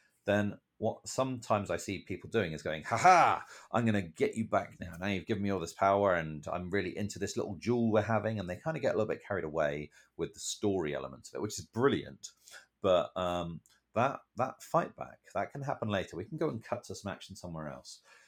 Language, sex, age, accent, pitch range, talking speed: English, male, 30-49, British, 85-110 Hz, 235 wpm